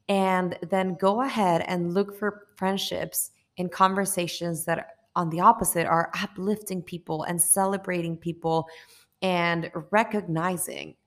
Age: 20-39